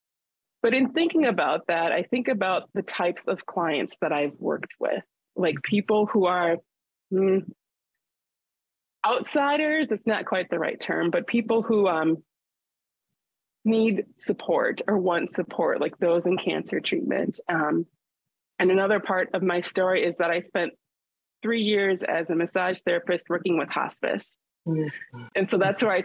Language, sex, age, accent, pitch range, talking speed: English, female, 20-39, American, 175-210 Hz, 155 wpm